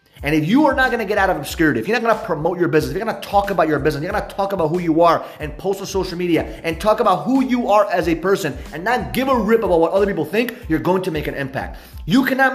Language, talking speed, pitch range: English, 300 wpm, 160-225 Hz